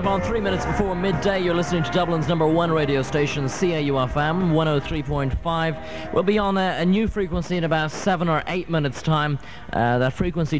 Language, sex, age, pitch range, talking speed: English, male, 30-49, 120-160 Hz, 180 wpm